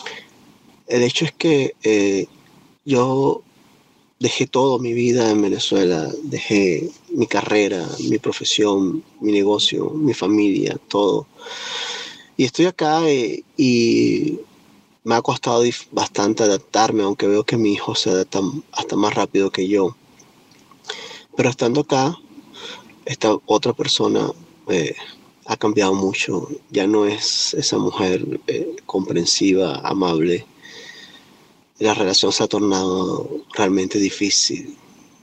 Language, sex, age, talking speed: Spanish, male, 30-49, 120 wpm